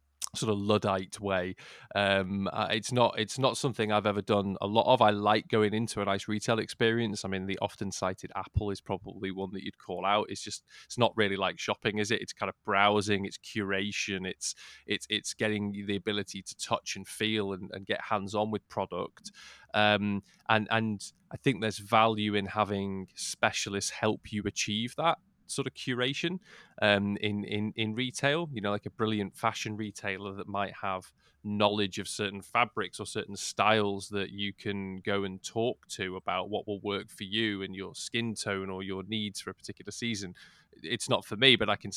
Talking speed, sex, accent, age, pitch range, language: 200 wpm, male, British, 20-39, 100-110 Hz, English